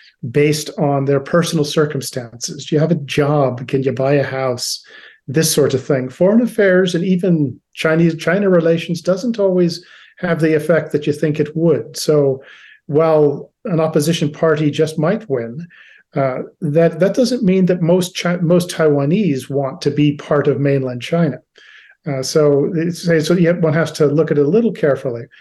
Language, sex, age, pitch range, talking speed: English, male, 40-59, 145-175 Hz, 175 wpm